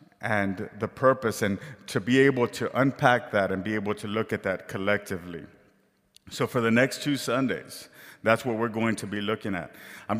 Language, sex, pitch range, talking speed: English, male, 100-125 Hz, 195 wpm